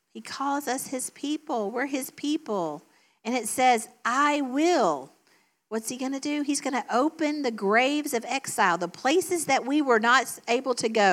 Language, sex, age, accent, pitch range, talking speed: English, female, 50-69, American, 220-290 Hz, 190 wpm